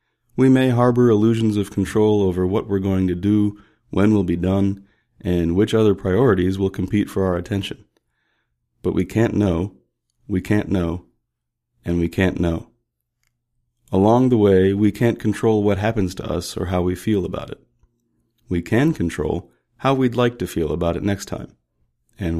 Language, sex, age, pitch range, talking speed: English, male, 40-59, 90-115 Hz, 175 wpm